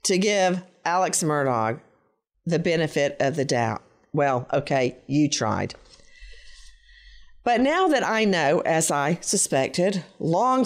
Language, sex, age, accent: English, female, 50-69, American